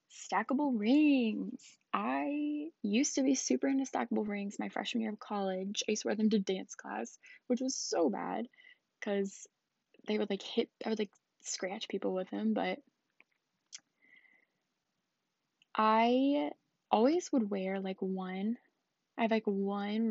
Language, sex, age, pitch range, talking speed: English, female, 10-29, 195-255 Hz, 145 wpm